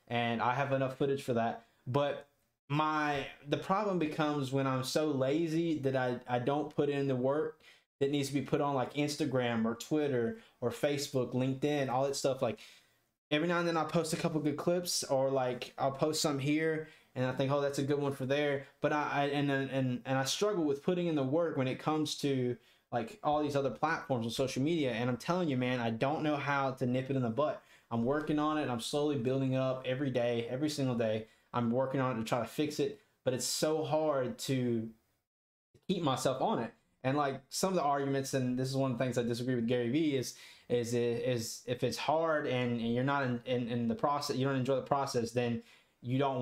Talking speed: 235 wpm